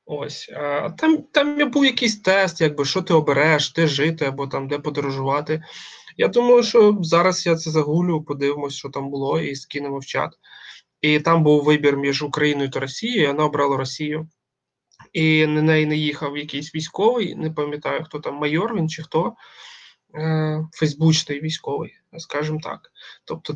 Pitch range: 145-160 Hz